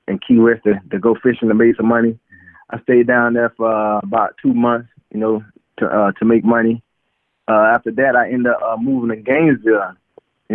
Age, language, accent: 20-39, English, American